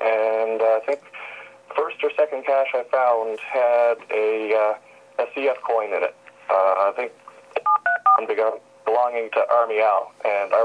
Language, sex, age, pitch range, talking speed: English, male, 40-59, 105-120 Hz, 165 wpm